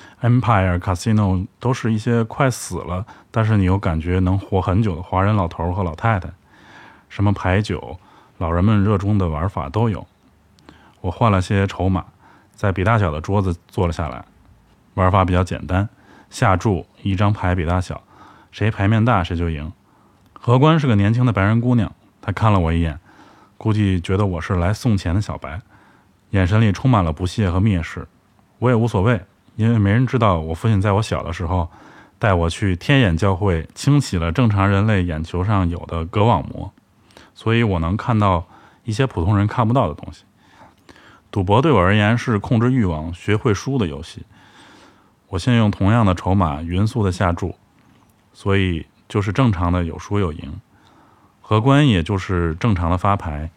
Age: 20-39